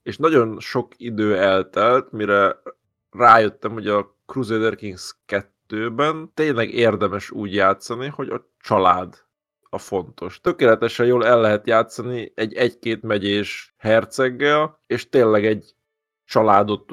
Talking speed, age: 115 wpm, 20-39